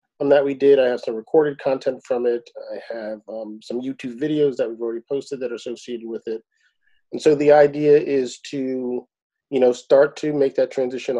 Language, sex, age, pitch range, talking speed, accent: English, male, 40-59, 115-140 Hz, 205 wpm, American